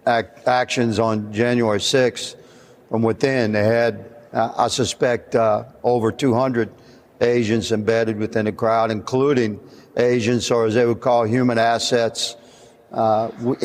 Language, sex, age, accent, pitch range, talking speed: English, male, 60-79, American, 115-130 Hz, 130 wpm